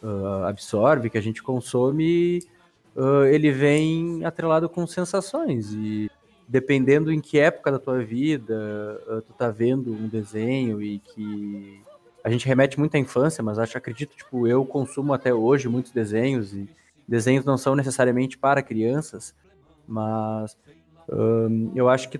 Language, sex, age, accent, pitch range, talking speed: Portuguese, male, 20-39, Brazilian, 110-150 Hz, 150 wpm